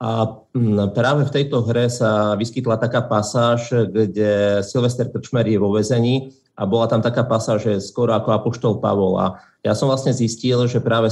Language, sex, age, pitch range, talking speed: Slovak, male, 30-49, 105-120 Hz, 175 wpm